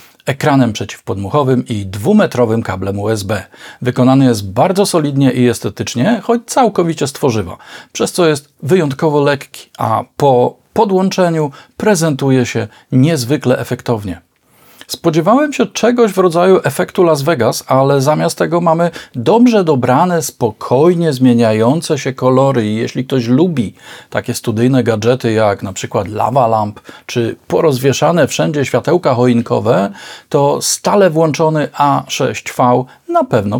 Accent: native